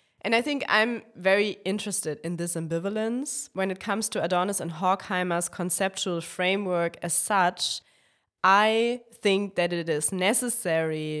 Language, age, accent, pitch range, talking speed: English, 20-39, German, 160-190 Hz, 140 wpm